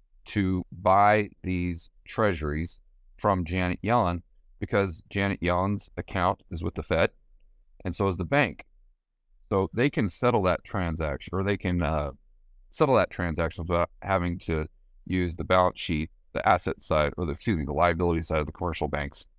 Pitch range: 80-100 Hz